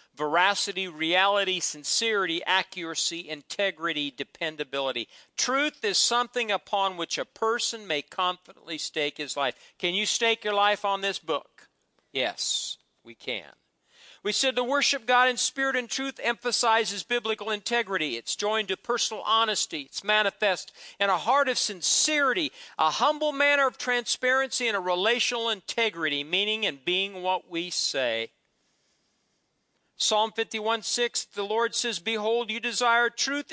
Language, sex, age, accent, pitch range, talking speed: English, male, 50-69, American, 185-245 Hz, 140 wpm